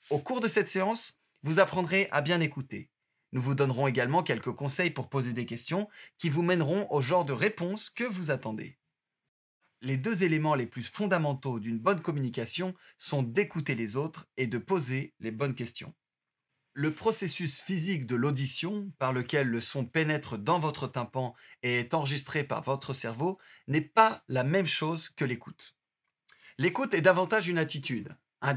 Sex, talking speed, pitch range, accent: male, 170 wpm, 135-180 Hz, French